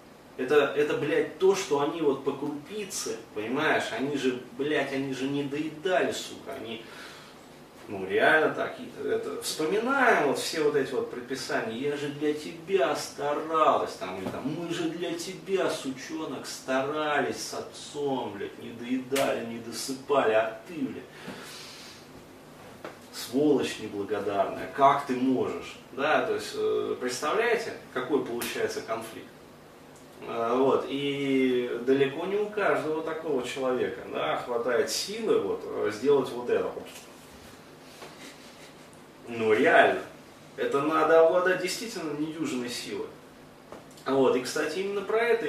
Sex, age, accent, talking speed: male, 30-49, native, 125 wpm